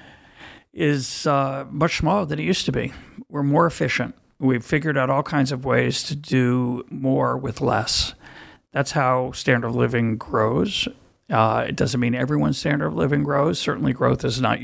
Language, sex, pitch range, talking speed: Hebrew, male, 125-145 Hz, 175 wpm